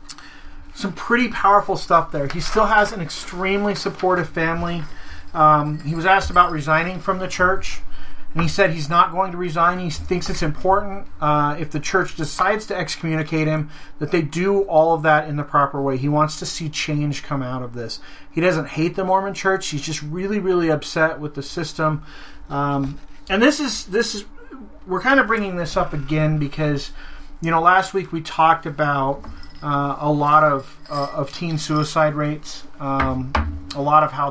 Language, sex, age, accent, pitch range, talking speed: English, male, 30-49, American, 150-185 Hz, 190 wpm